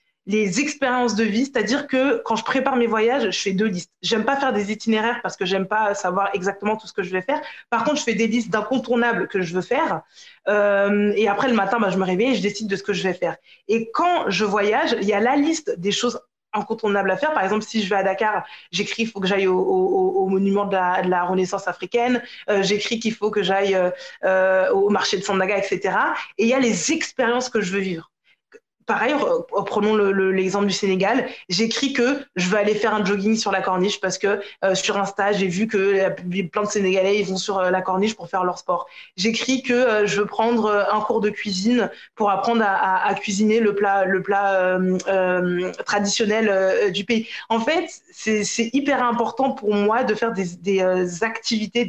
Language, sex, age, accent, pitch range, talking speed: French, female, 20-39, French, 195-235 Hz, 230 wpm